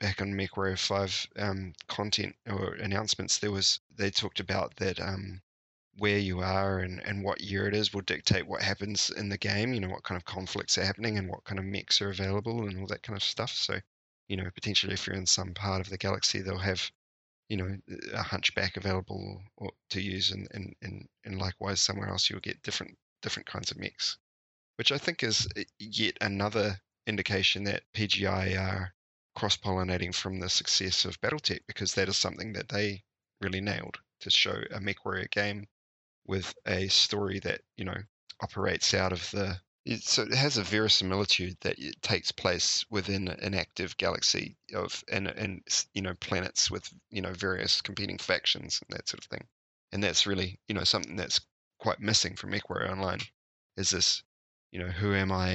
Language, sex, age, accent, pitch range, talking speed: English, male, 20-39, Australian, 95-100 Hz, 190 wpm